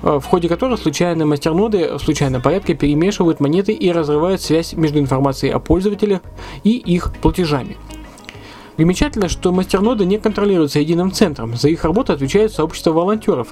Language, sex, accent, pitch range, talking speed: Russian, male, native, 150-190 Hz, 145 wpm